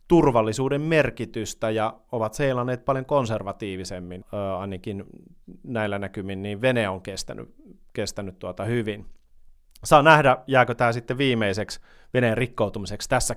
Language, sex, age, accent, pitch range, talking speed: Finnish, male, 30-49, native, 100-130 Hz, 120 wpm